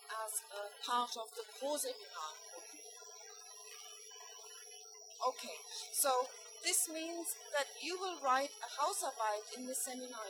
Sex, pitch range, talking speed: female, 240-365 Hz, 115 wpm